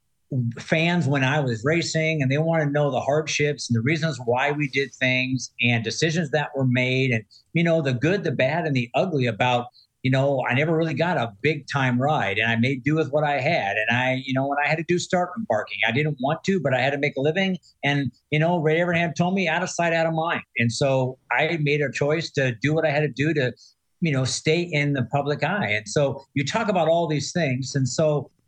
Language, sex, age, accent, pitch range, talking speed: English, male, 50-69, American, 125-155 Hz, 255 wpm